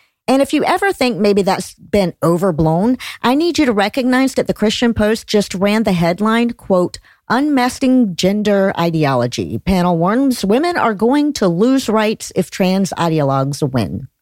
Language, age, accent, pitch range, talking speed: English, 50-69, American, 170-235 Hz, 160 wpm